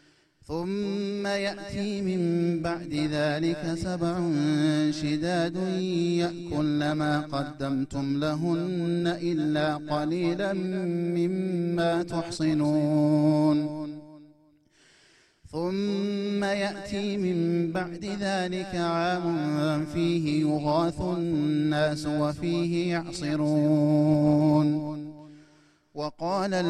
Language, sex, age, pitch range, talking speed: Amharic, male, 30-49, 150-180 Hz, 60 wpm